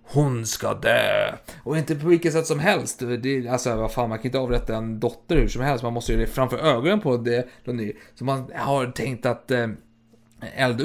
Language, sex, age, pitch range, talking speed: Swedish, male, 30-49, 115-150 Hz, 215 wpm